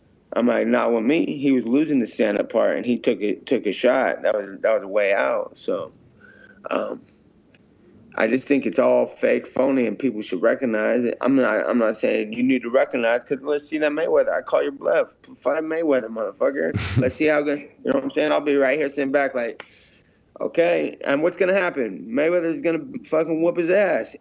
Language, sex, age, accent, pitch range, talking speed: English, male, 20-39, American, 120-145 Hz, 220 wpm